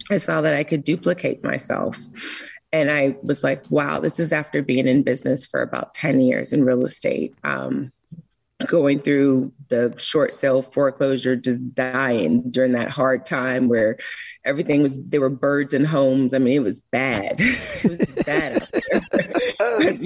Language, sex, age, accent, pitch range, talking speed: English, female, 30-49, American, 130-150 Hz, 170 wpm